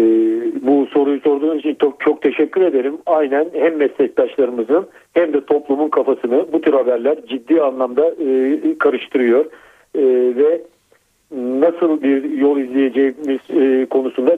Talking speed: 125 wpm